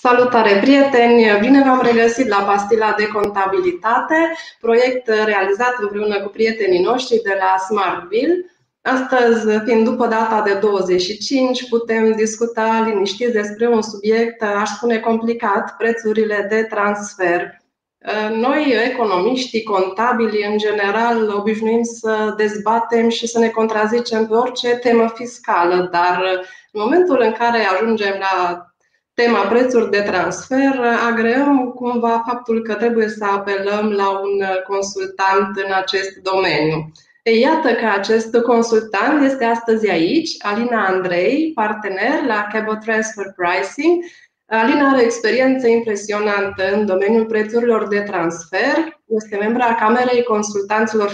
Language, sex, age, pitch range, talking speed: Romanian, female, 20-39, 200-235 Hz, 120 wpm